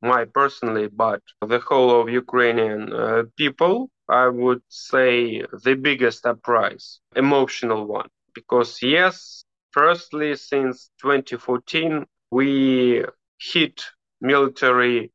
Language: English